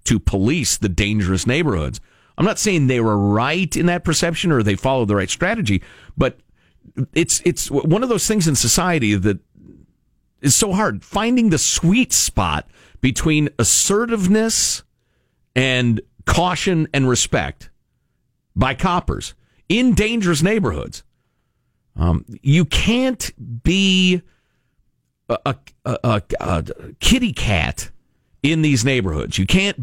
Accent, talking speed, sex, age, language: American, 125 wpm, male, 50-69, English